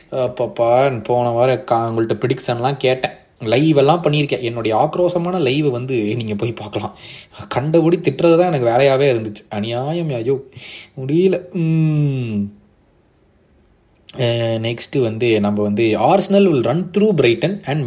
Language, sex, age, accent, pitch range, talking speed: Tamil, male, 20-39, native, 115-180 Hz, 115 wpm